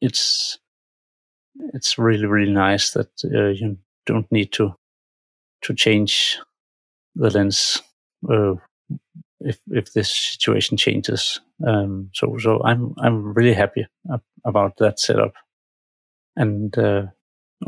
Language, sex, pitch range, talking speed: English, male, 95-115 Hz, 110 wpm